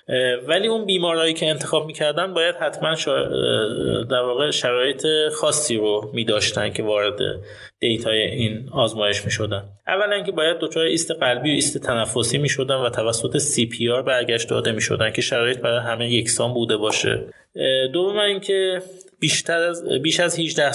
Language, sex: Persian, male